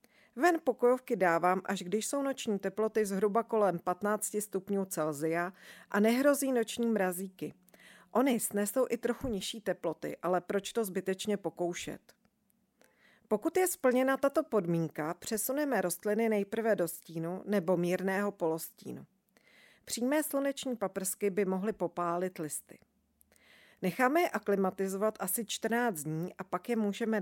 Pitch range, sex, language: 180-230 Hz, female, Czech